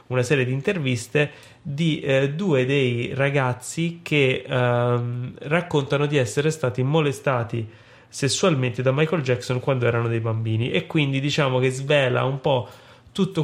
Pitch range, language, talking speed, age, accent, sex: 120-145 Hz, Italian, 145 wpm, 20-39, native, male